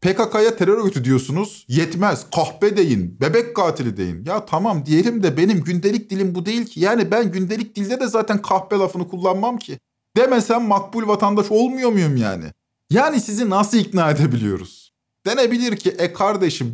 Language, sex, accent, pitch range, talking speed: Turkish, male, native, 155-220 Hz, 160 wpm